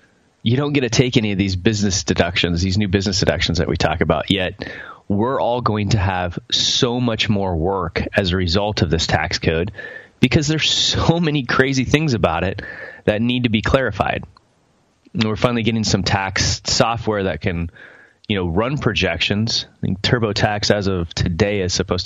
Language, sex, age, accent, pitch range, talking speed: English, male, 30-49, American, 95-120 Hz, 190 wpm